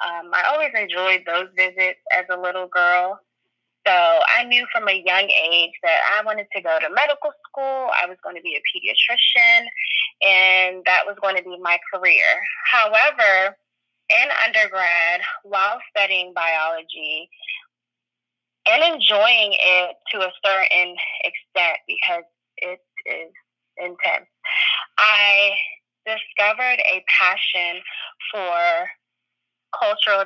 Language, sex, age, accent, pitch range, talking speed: English, female, 20-39, American, 180-275 Hz, 125 wpm